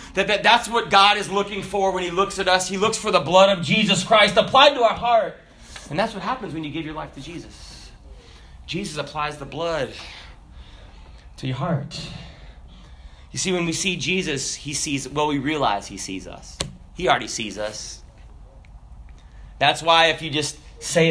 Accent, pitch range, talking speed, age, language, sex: American, 110-160 Hz, 185 wpm, 30-49, English, male